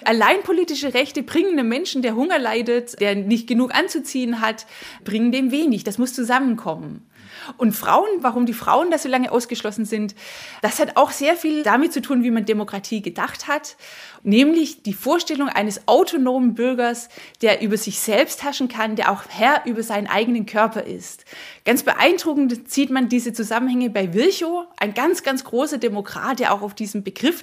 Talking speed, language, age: 175 wpm, German, 20-39